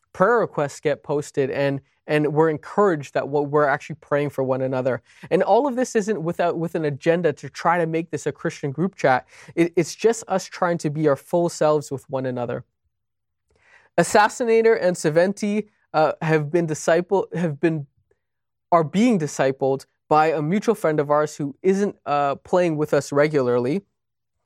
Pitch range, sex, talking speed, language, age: 145-195 Hz, male, 170 wpm, English, 20-39